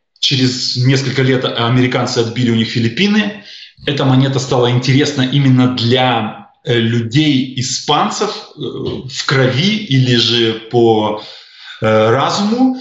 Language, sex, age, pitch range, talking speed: Russian, male, 20-39, 120-145 Hz, 100 wpm